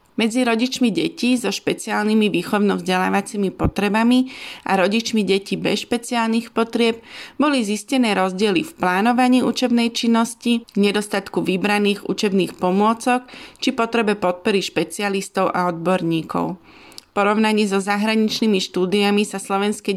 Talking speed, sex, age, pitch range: 110 wpm, female, 30-49, 190-230 Hz